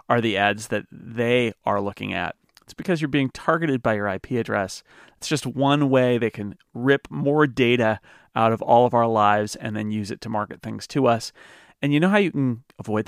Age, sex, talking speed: 40-59, male, 220 wpm